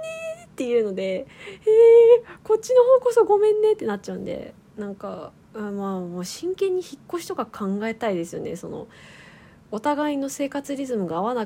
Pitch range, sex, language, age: 180-260 Hz, female, Japanese, 20-39